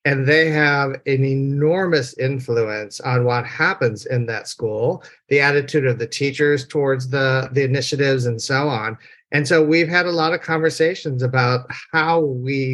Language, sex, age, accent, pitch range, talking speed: English, male, 40-59, American, 130-155 Hz, 165 wpm